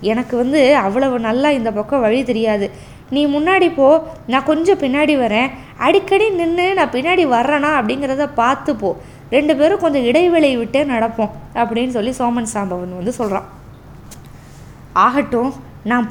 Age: 20-39